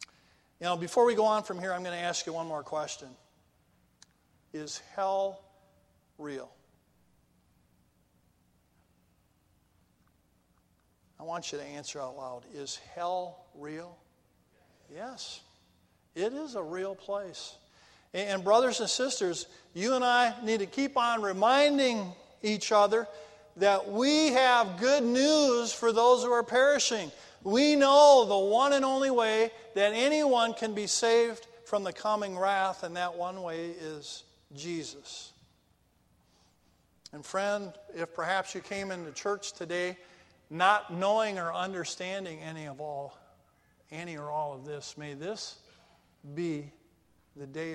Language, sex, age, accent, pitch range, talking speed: English, male, 50-69, American, 150-225 Hz, 135 wpm